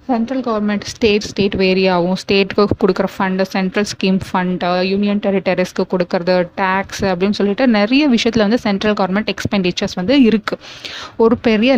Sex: female